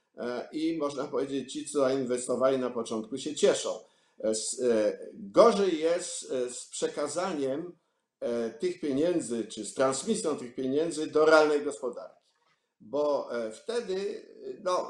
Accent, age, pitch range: native, 50-69, 125-185 Hz